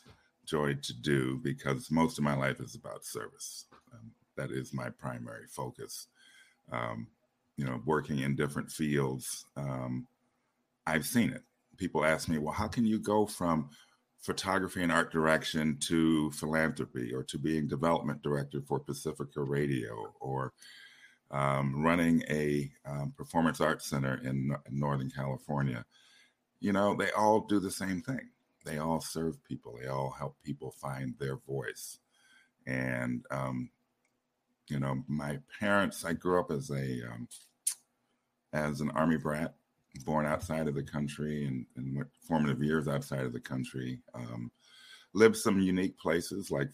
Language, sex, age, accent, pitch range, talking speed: English, male, 50-69, American, 65-80 Hz, 150 wpm